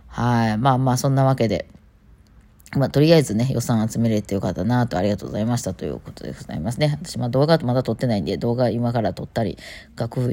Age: 20-39